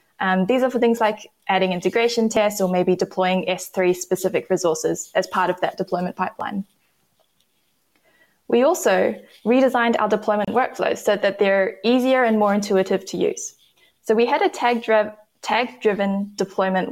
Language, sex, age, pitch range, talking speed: English, female, 20-39, 190-230 Hz, 145 wpm